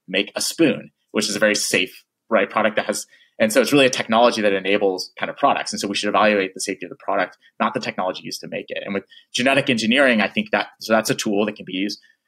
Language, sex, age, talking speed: English, male, 30-49, 270 wpm